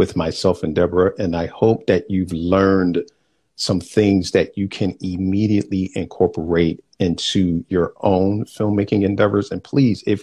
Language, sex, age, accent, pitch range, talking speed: English, male, 50-69, American, 90-105 Hz, 145 wpm